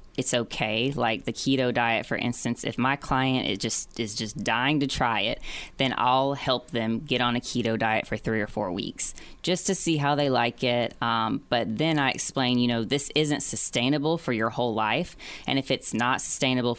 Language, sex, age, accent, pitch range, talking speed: English, female, 20-39, American, 115-135 Hz, 210 wpm